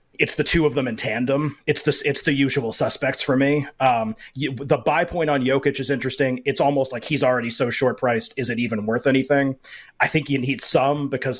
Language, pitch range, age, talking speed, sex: English, 115-140 Hz, 30-49, 220 wpm, male